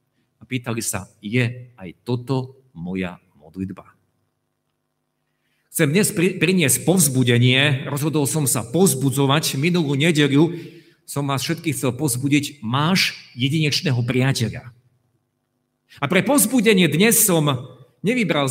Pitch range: 125-170 Hz